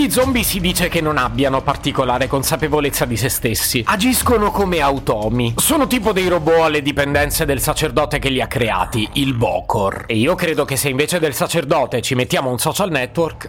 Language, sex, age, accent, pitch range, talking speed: Italian, male, 30-49, native, 130-190 Hz, 185 wpm